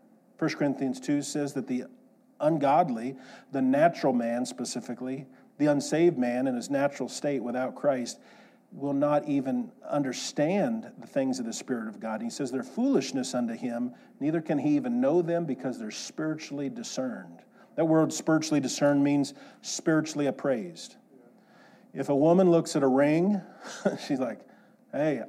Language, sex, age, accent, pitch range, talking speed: English, male, 40-59, American, 130-185 Hz, 155 wpm